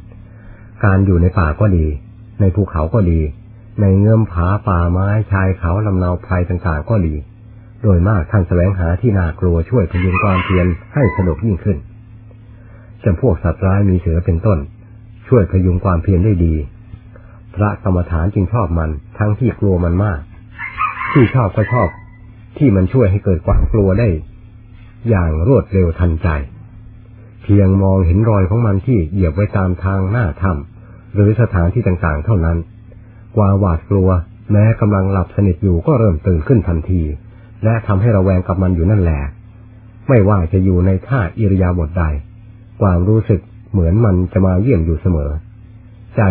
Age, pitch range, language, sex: 60-79, 90-110 Hz, Thai, male